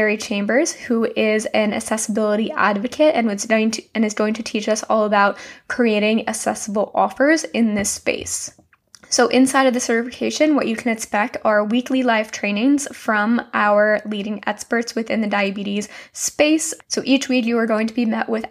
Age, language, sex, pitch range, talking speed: 10-29, English, female, 210-245 Hz, 180 wpm